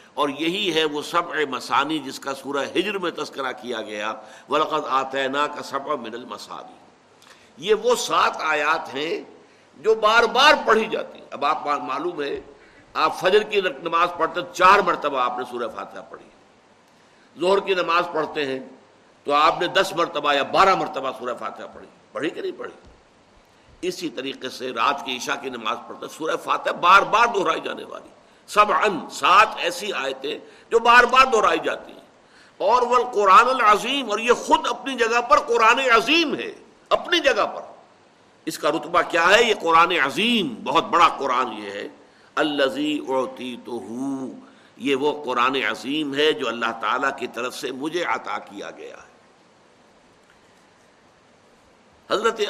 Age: 60-79